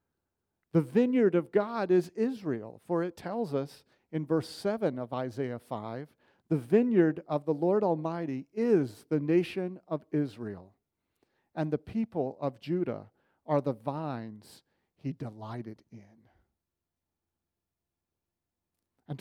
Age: 50-69